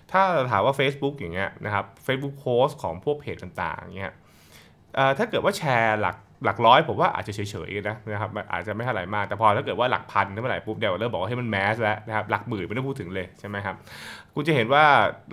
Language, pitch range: Thai, 100-135 Hz